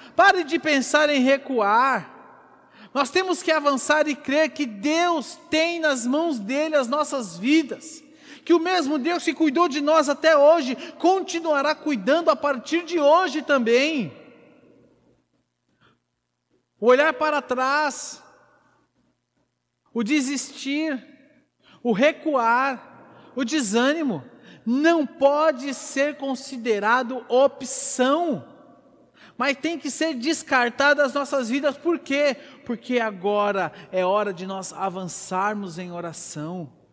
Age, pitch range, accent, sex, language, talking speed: 50-69, 235-300 Hz, Brazilian, male, Portuguese, 115 wpm